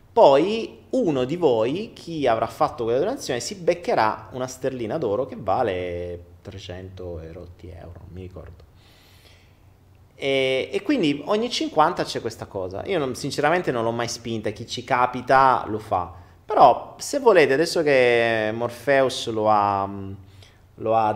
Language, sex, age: Italian, male, 30-49